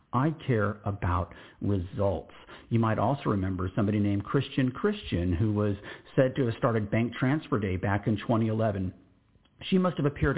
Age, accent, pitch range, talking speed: 50-69, American, 100-135 Hz, 160 wpm